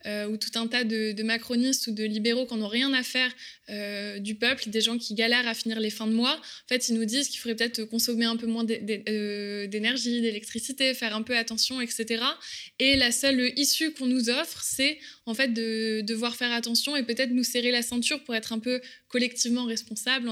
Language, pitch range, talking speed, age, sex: French, 220-250 Hz, 225 wpm, 20-39, female